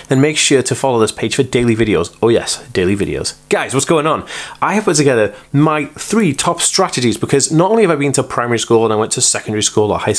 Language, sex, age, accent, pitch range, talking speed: English, male, 20-39, British, 115-155 Hz, 255 wpm